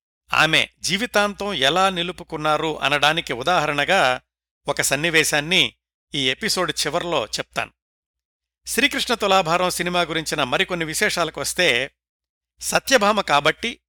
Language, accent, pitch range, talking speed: Telugu, native, 120-180 Hz, 90 wpm